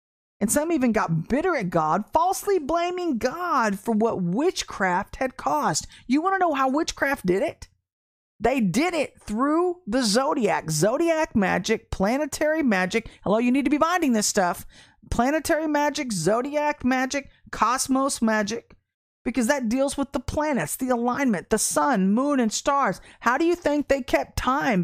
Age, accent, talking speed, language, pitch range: 40-59, American, 160 wpm, English, 205-305 Hz